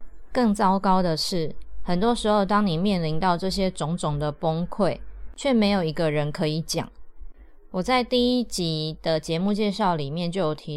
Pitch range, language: 155-195 Hz, Chinese